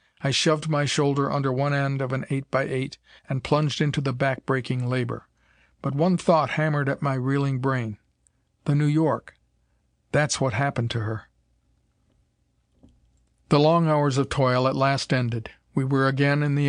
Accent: American